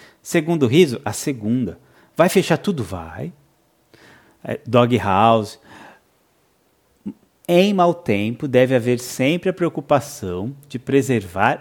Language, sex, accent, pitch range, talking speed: Portuguese, male, Brazilian, 115-160 Hz, 105 wpm